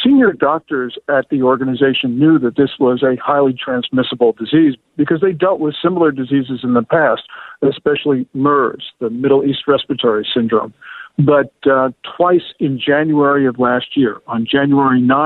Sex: male